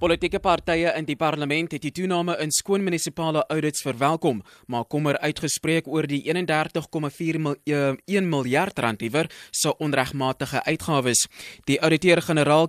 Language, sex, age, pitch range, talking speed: English, male, 20-39, 135-160 Hz, 135 wpm